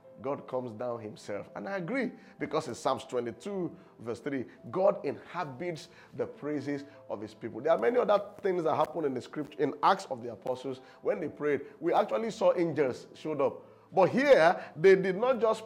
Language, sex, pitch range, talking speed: English, male, 155-240 Hz, 190 wpm